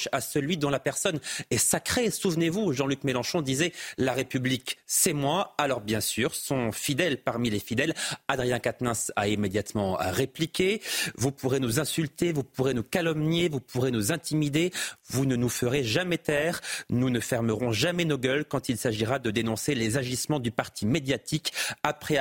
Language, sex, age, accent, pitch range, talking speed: French, male, 40-59, French, 115-150 Hz, 170 wpm